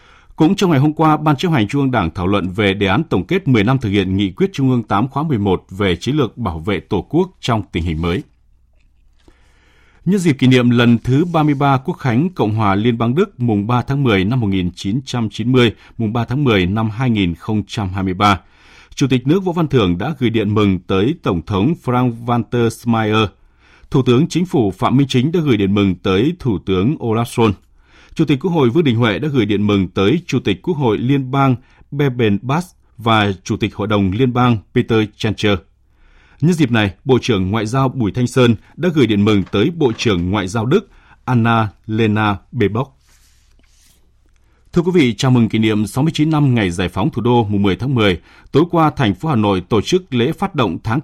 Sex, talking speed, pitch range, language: male, 210 wpm, 100-135 Hz, Vietnamese